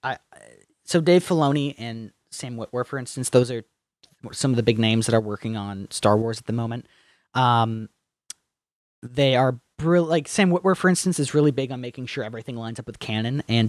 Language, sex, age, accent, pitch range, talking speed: English, male, 30-49, American, 115-145 Hz, 195 wpm